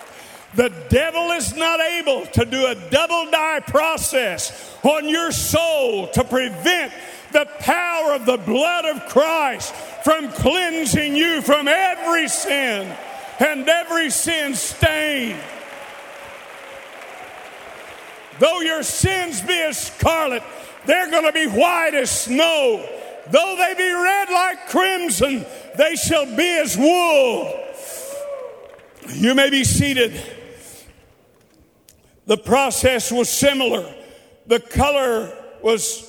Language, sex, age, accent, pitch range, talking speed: English, male, 50-69, American, 230-310 Hz, 115 wpm